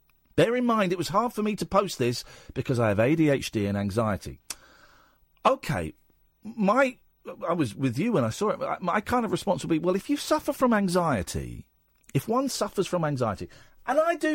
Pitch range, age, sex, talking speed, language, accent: 130-195 Hz, 50-69, male, 195 wpm, English, British